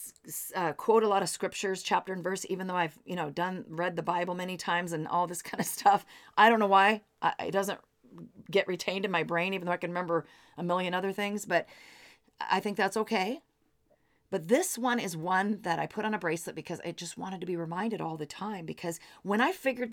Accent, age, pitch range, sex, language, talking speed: American, 40-59, 170-210 Hz, female, English, 230 wpm